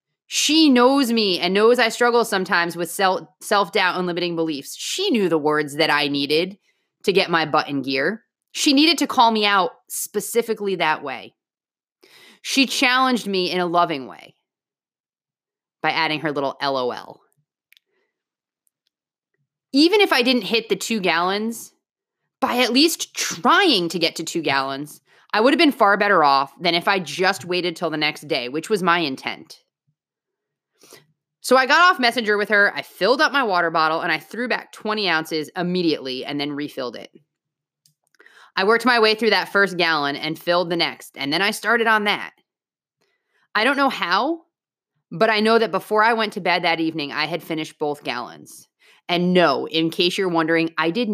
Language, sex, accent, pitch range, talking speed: English, female, American, 155-225 Hz, 180 wpm